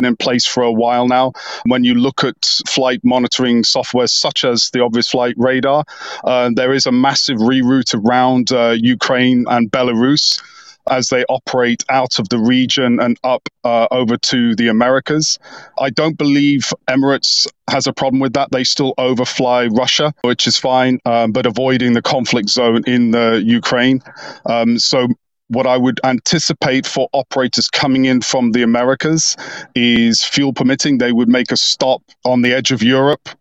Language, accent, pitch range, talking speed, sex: English, British, 120-140 Hz, 170 wpm, male